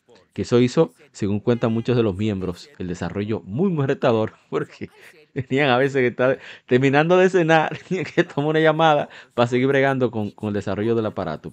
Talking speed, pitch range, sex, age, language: 195 wpm, 100-145 Hz, male, 30-49, Spanish